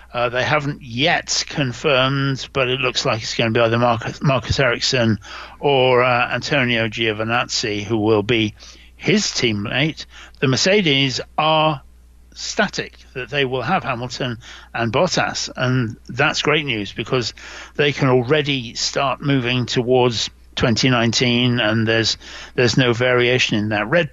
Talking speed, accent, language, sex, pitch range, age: 140 wpm, British, English, male, 115-140 Hz, 60-79